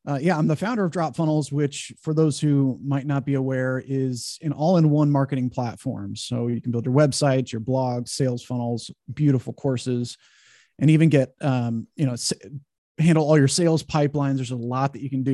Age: 30-49